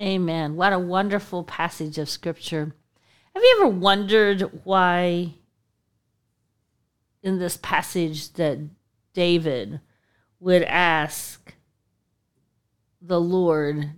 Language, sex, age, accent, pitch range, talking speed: English, female, 40-59, American, 130-190 Hz, 90 wpm